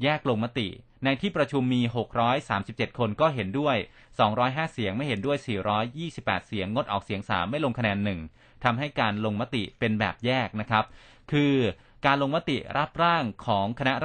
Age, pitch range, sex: 30-49, 105-135 Hz, male